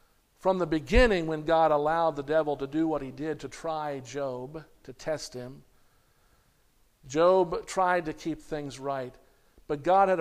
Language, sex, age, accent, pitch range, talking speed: English, male, 50-69, American, 140-165 Hz, 165 wpm